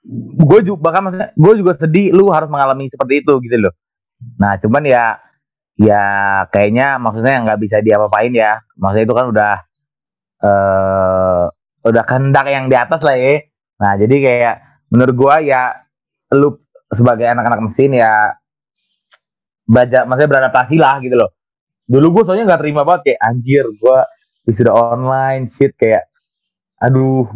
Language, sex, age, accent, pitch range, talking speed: Indonesian, male, 20-39, native, 115-150 Hz, 145 wpm